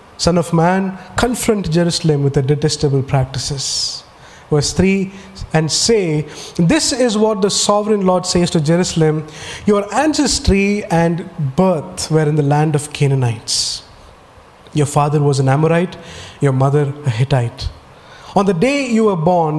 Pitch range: 145-180 Hz